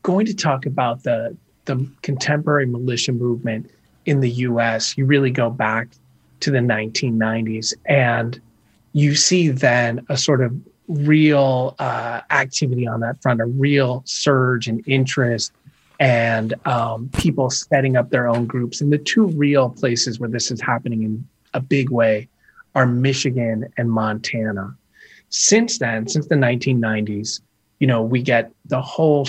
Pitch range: 115-140 Hz